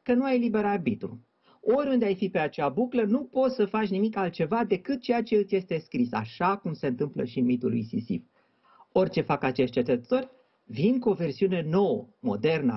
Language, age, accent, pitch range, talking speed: Romanian, 40-59, native, 165-240 Hz, 195 wpm